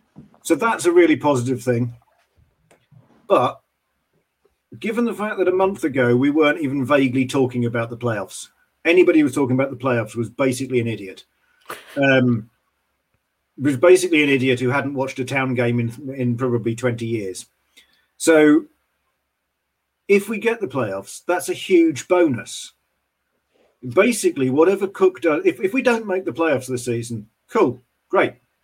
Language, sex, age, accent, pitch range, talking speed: English, male, 50-69, British, 125-195 Hz, 155 wpm